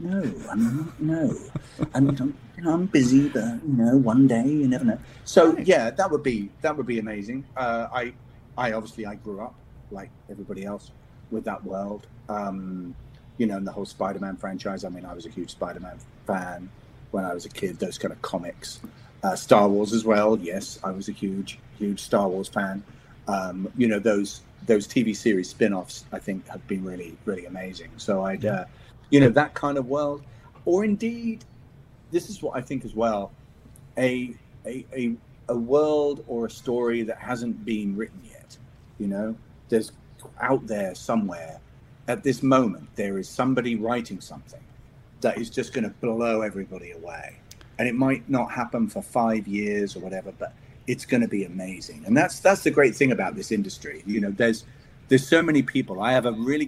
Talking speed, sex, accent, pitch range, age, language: 190 wpm, male, British, 105-135 Hz, 30-49, English